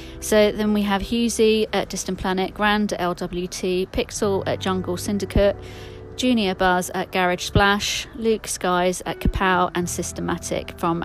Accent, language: British, English